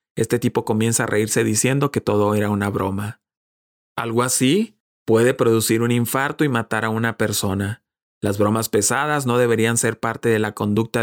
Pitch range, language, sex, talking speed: 105-125 Hz, Spanish, male, 175 wpm